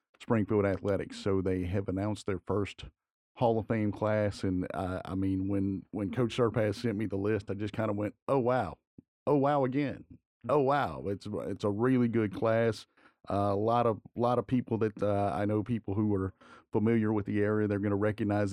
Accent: American